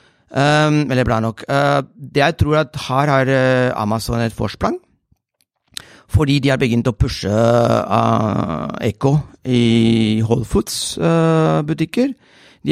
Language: English